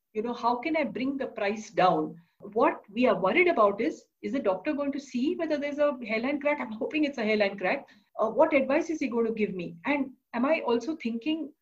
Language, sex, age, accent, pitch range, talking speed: English, female, 50-69, Indian, 215-295 Hz, 240 wpm